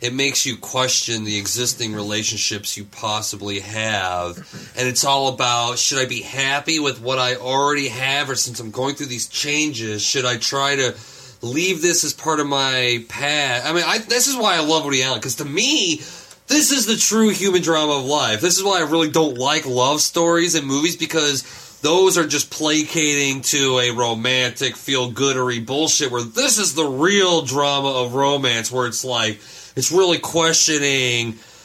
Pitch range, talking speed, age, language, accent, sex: 125-165 Hz, 180 wpm, 30-49, English, American, male